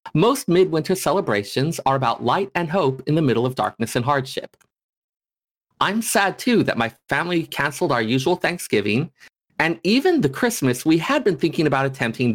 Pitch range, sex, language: 125-185 Hz, male, English